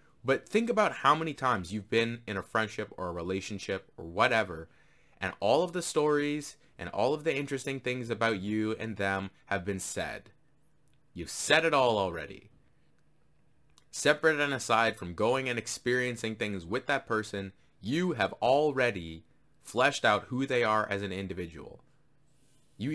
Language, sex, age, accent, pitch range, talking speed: English, male, 20-39, American, 105-150 Hz, 160 wpm